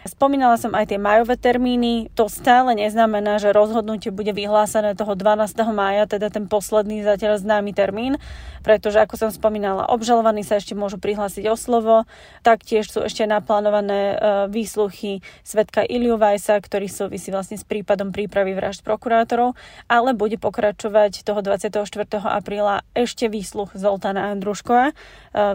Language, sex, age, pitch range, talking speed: Slovak, female, 20-39, 205-225 Hz, 145 wpm